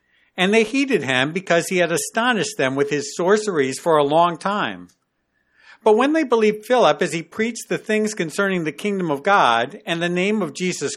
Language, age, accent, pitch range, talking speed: English, 50-69, American, 155-215 Hz, 195 wpm